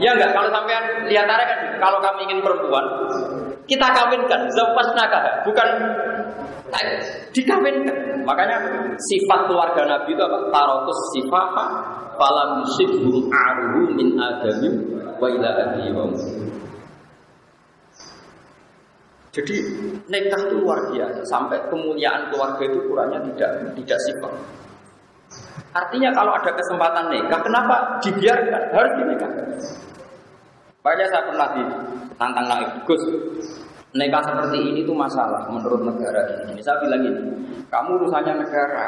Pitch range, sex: 160-240 Hz, male